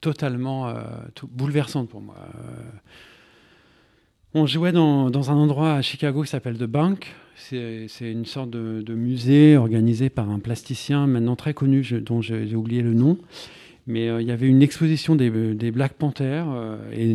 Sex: male